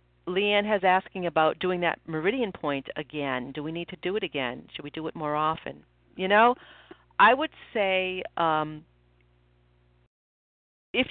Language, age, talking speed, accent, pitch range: English, 50-69, 155 wpm, American, 125-185 Hz